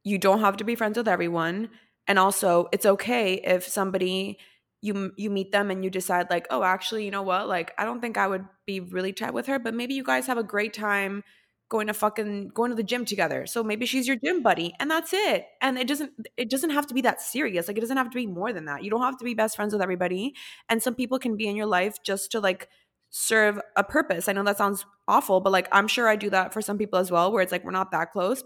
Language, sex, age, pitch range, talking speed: English, female, 20-39, 180-215 Hz, 280 wpm